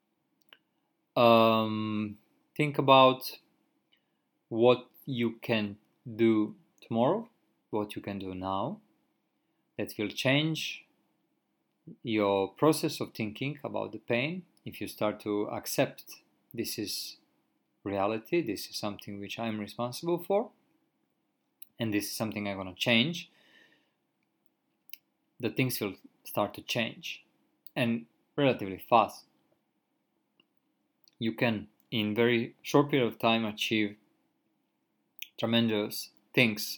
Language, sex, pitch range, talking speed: English, male, 105-125 Hz, 110 wpm